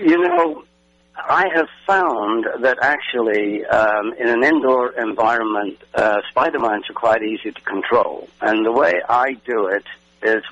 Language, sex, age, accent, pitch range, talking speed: English, male, 60-79, British, 105-125 Hz, 150 wpm